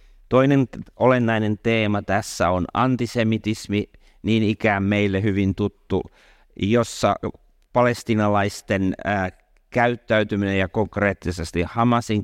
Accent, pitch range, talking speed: native, 95-115 Hz, 85 wpm